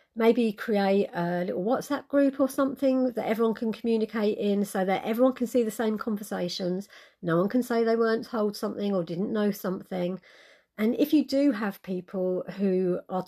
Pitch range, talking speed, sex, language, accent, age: 180-225 Hz, 185 wpm, female, English, British, 40-59